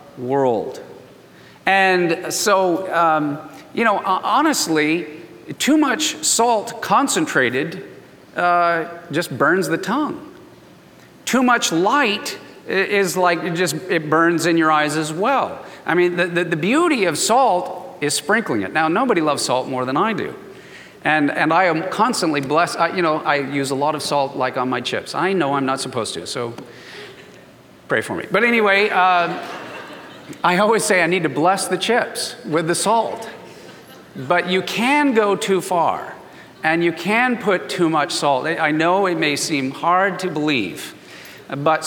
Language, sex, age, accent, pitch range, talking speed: English, male, 40-59, American, 160-215 Hz, 165 wpm